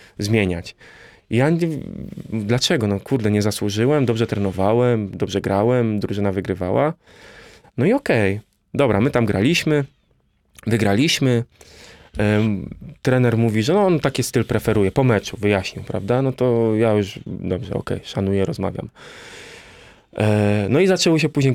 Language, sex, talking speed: Polish, male, 125 wpm